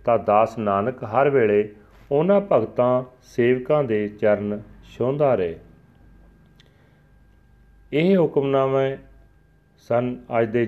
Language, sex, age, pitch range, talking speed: Punjabi, male, 40-59, 105-135 Hz, 95 wpm